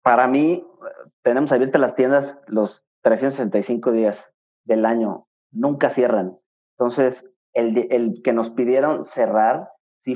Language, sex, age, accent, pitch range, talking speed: Spanish, male, 30-49, Mexican, 115-140 Hz, 125 wpm